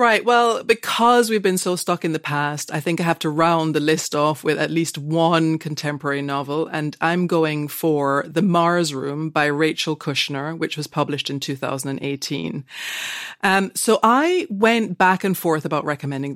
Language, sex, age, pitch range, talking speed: English, female, 30-49, 145-180 Hz, 180 wpm